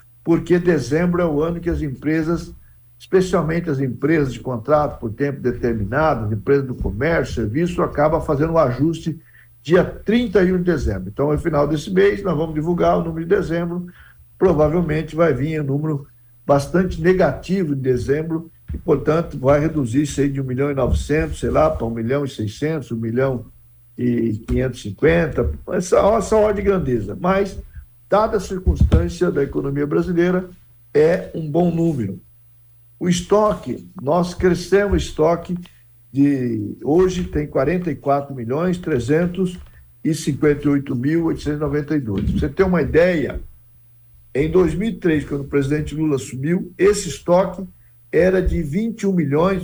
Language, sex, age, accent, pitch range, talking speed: Portuguese, male, 60-79, Brazilian, 125-175 Hz, 140 wpm